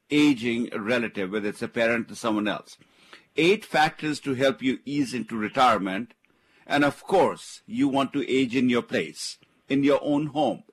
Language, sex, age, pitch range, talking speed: English, male, 50-69, 120-165 Hz, 175 wpm